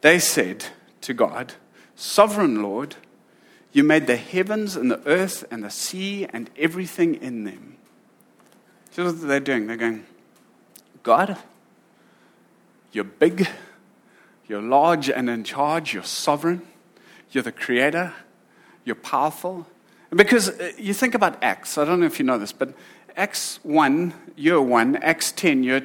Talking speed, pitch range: 140 wpm, 155-210 Hz